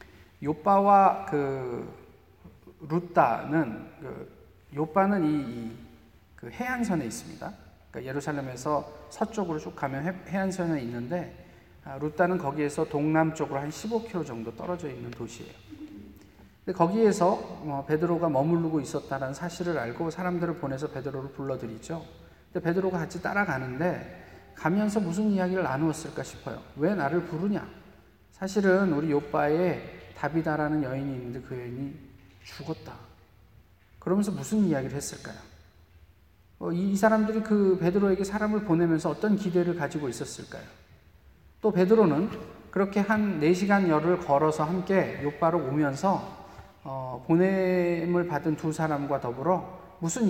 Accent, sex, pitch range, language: native, male, 135-185 Hz, Korean